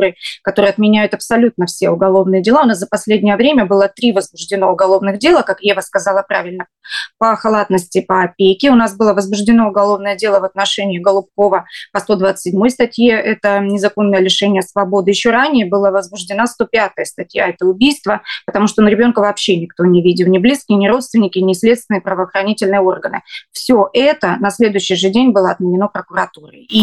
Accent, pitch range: native, 195-225 Hz